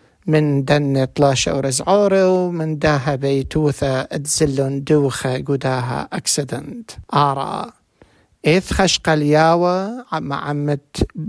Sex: male